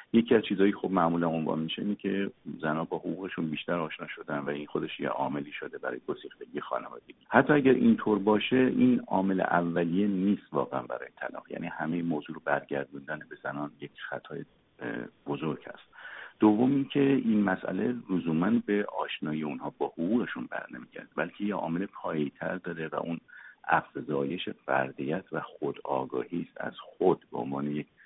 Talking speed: 155 wpm